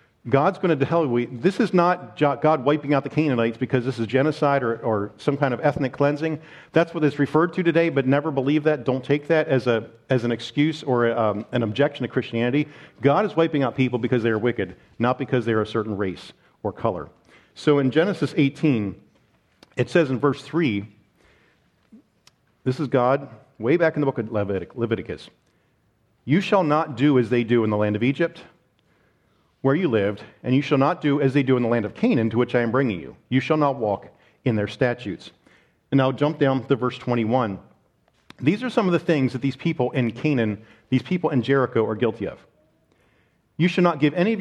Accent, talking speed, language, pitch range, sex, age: American, 215 wpm, English, 115-150 Hz, male, 50-69